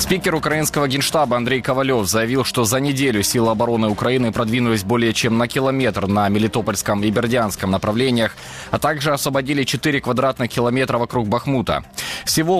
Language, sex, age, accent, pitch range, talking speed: Ukrainian, male, 20-39, native, 110-135 Hz, 150 wpm